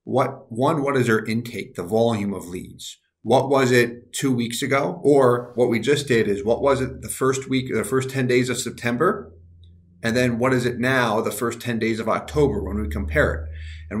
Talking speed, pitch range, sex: 220 wpm, 110-130 Hz, male